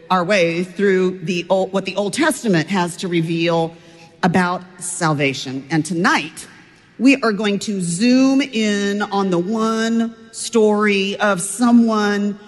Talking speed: 135 wpm